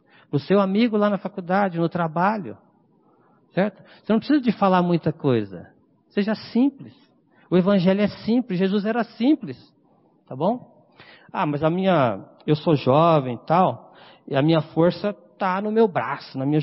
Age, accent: 50-69, Brazilian